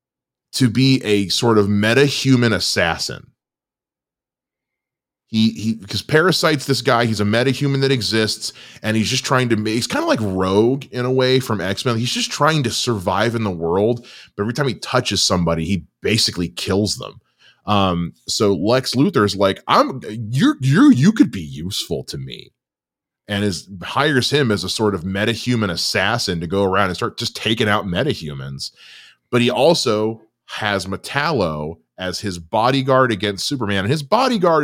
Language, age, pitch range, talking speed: English, 20-39, 100-135 Hz, 175 wpm